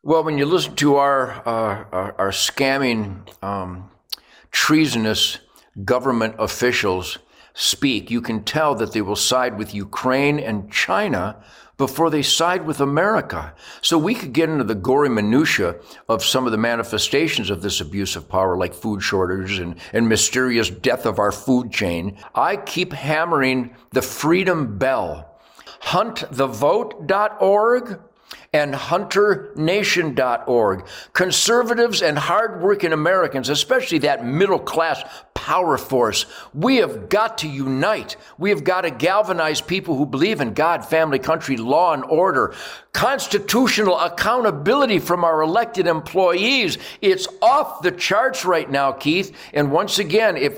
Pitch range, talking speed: 115-180 Hz, 135 wpm